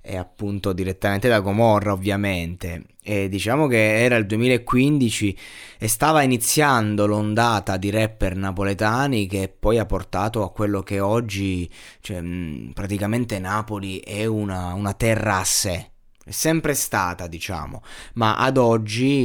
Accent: native